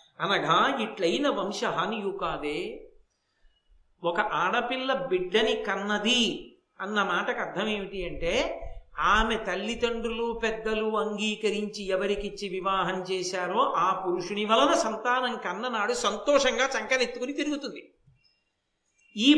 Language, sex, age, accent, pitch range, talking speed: Telugu, male, 50-69, native, 220-300 Hz, 95 wpm